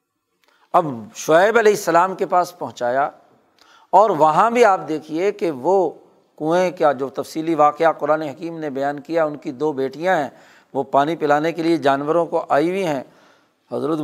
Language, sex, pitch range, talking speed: Urdu, male, 140-170 Hz, 170 wpm